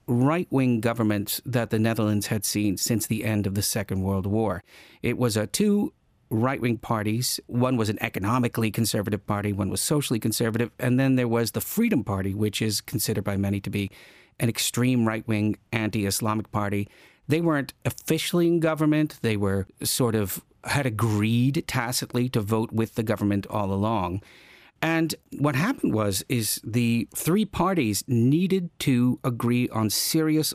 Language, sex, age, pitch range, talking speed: English, male, 50-69, 105-135 Hz, 160 wpm